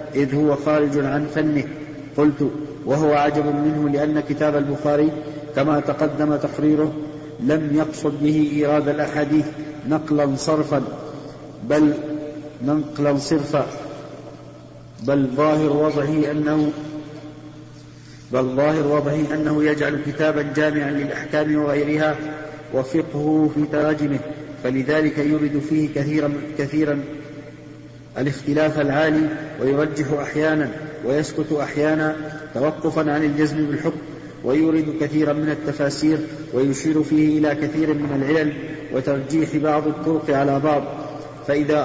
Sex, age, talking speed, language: male, 50-69, 105 wpm, Arabic